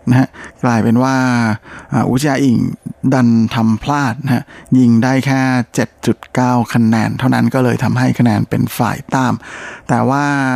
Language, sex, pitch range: Thai, male, 120-135 Hz